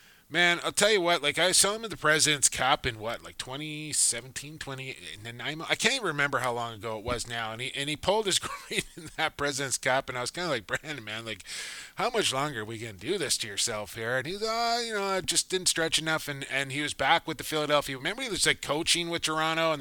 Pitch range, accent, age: 135-175 Hz, American, 20-39